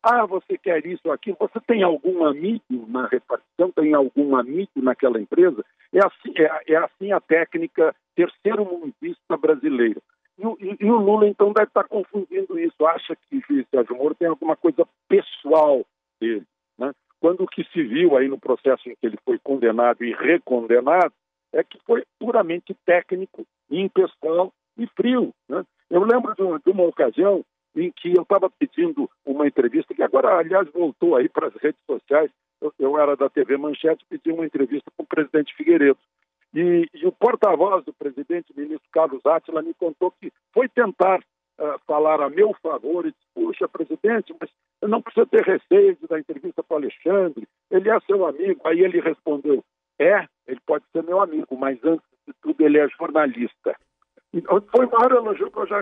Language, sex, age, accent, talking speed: Portuguese, male, 60-79, Brazilian, 180 wpm